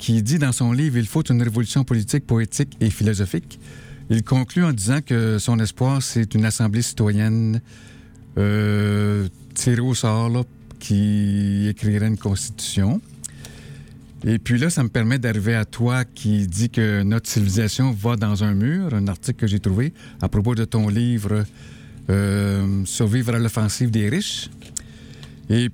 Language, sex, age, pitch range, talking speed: French, male, 60-79, 105-125 Hz, 160 wpm